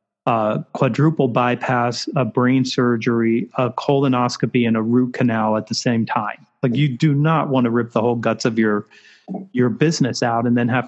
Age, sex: 40-59, male